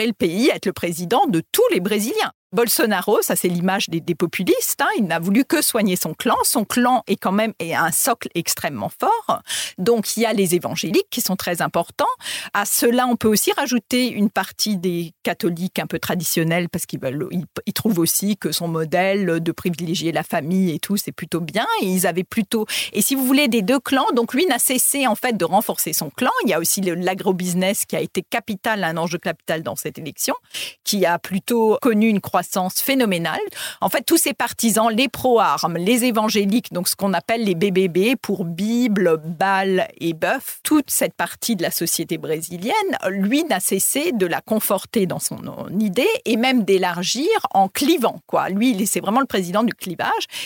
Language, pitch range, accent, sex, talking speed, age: French, 180-240 Hz, French, female, 200 wpm, 40-59